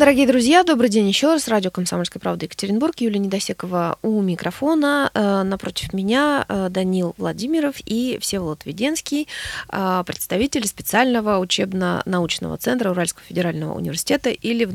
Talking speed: 125 wpm